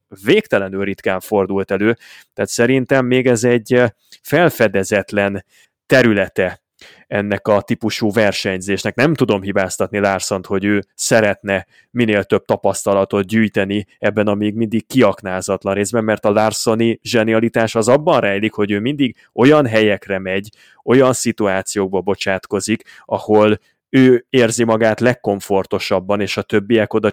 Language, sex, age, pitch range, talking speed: Hungarian, male, 20-39, 100-115 Hz, 125 wpm